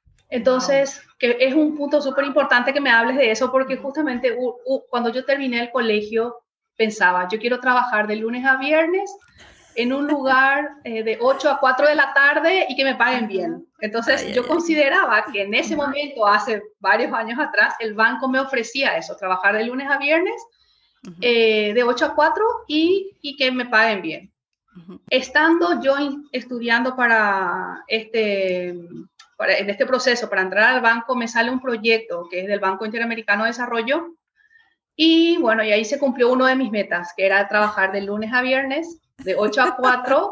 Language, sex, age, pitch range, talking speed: Spanish, female, 30-49, 220-290 Hz, 185 wpm